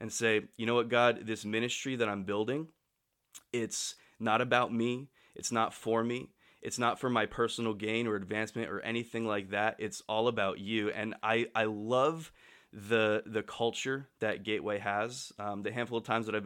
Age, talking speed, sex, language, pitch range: 20-39, 190 wpm, male, English, 110-130 Hz